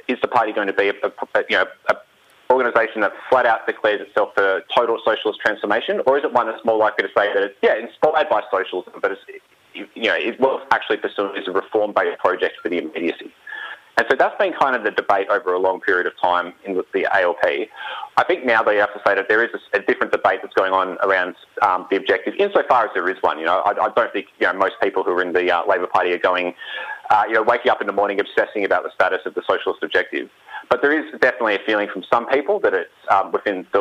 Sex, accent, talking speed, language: male, Australian, 255 wpm, English